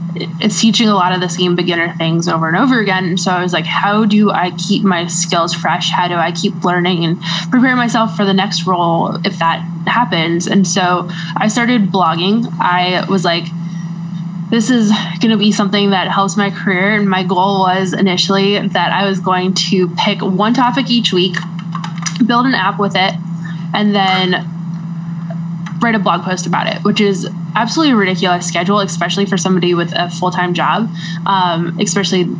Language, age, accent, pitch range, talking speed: English, 10-29, American, 170-205 Hz, 185 wpm